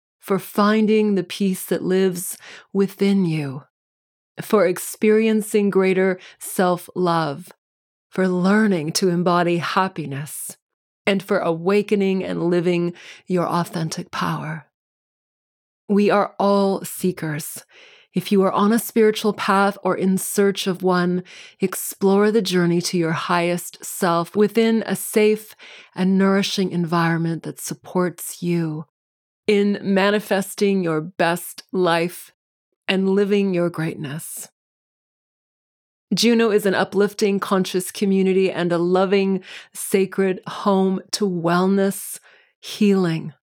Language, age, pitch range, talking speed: English, 30-49, 175-200 Hz, 110 wpm